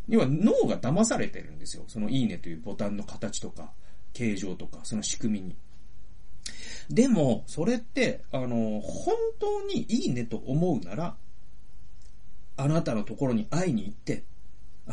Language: Japanese